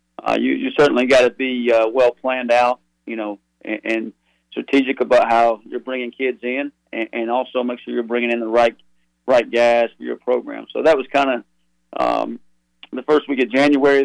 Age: 40-59